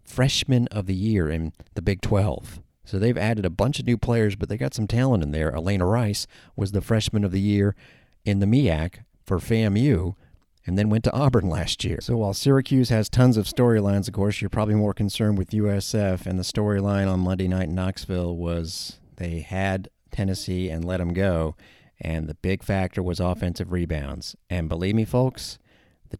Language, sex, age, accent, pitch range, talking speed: English, male, 40-59, American, 90-105 Hz, 195 wpm